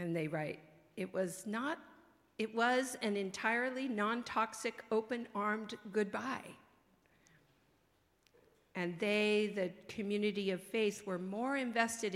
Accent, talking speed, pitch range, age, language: American, 120 wpm, 160-210 Hz, 50-69, English